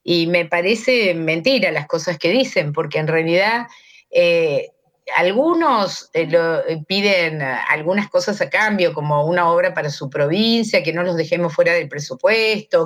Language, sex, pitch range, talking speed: Spanish, female, 165-235 Hz, 160 wpm